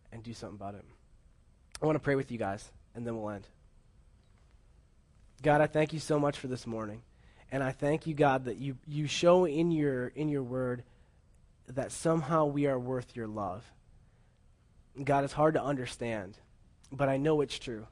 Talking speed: 190 wpm